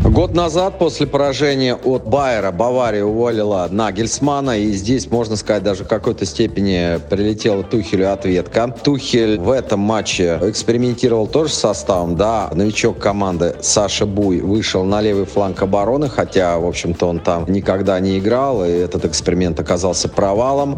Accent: native